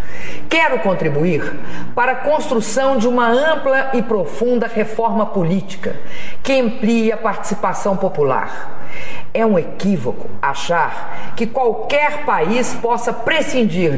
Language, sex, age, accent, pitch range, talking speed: English, female, 50-69, Brazilian, 185-245 Hz, 110 wpm